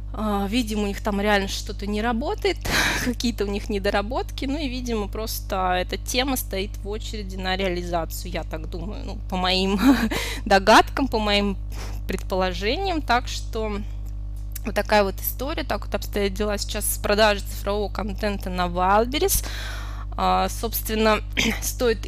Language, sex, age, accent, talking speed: Russian, female, 20-39, native, 140 wpm